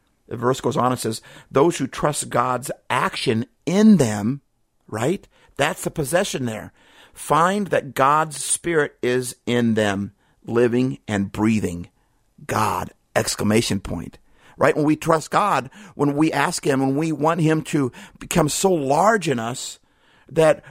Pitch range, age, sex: 125-180 Hz, 50-69, male